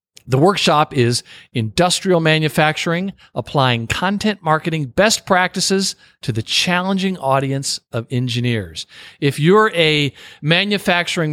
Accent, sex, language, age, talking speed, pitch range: American, male, English, 50-69, 105 wpm, 120-160 Hz